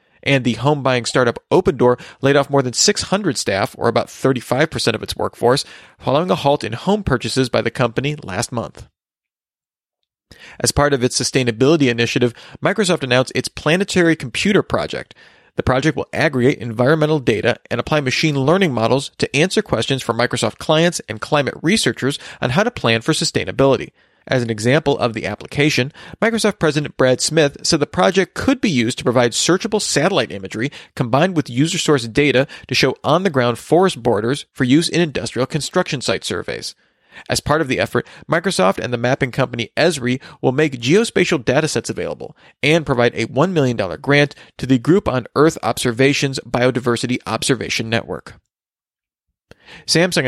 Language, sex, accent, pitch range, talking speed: English, male, American, 125-155 Hz, 165 wpm